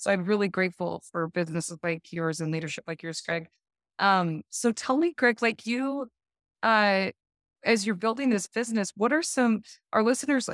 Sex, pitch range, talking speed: female, 170-200 Hz, 175 wpm